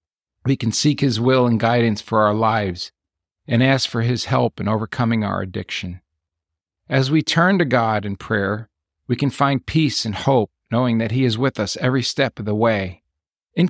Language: English